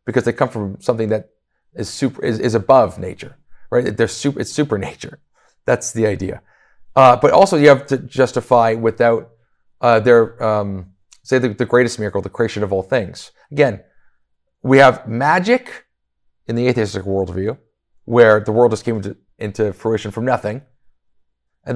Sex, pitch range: male, 105-135 Hz